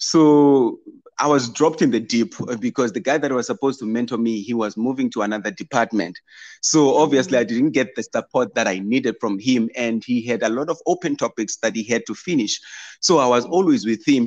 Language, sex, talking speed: English, male, 225 wpm